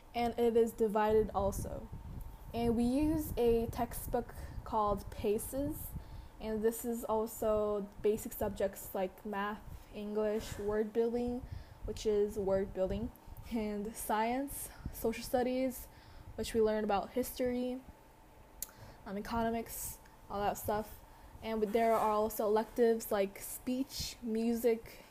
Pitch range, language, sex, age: 205-240 Hz, Korean, female, 10-29